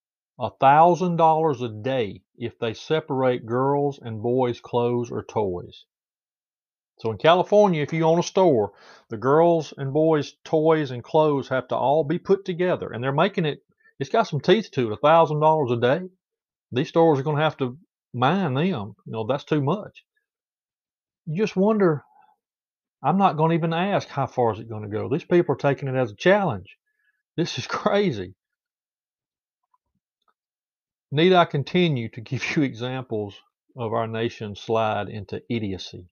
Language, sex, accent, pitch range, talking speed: English, male, American, 110-170 Hz, 165 wpm